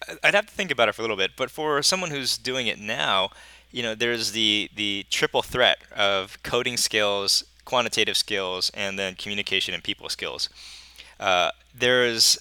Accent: American